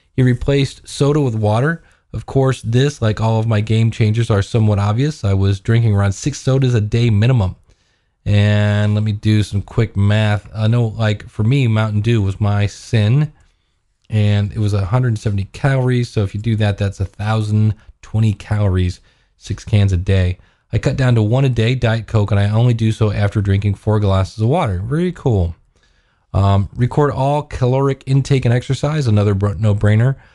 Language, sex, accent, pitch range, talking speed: English, male, American, 105-125 Hz, 185 wpm